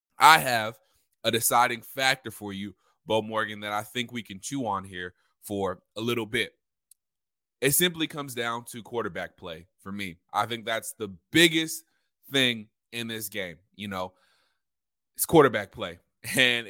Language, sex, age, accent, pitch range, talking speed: English, male, 20-39, American, 105-135 Hz, 160 wpm